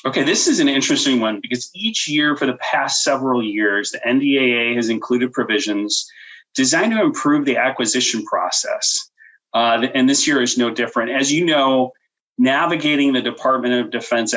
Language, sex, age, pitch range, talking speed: English, male, 30-49, 115-150 Hz, 165 wpm